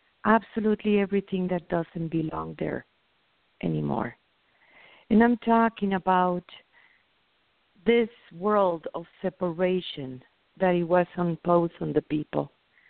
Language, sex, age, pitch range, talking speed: English, female, 50-69, 170-205 Hz, 100 wpm